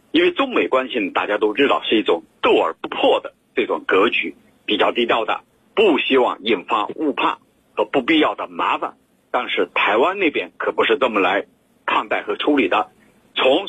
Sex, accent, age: male, native, 50-69